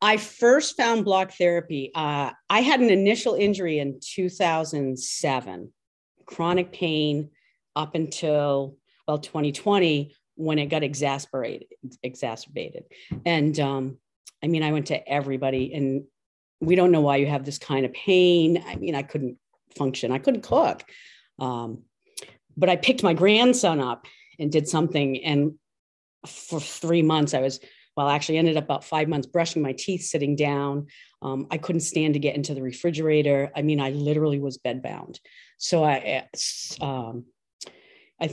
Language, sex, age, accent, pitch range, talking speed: English, female, 40-59, American, 140-180 Hz, 155 wpm